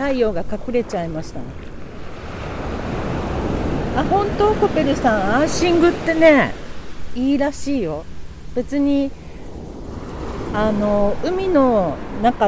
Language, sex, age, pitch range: Japanese, female, 50-69, 210-310 Hz